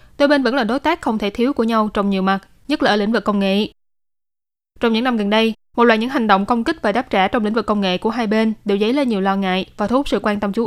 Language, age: Vietnamese, 10-29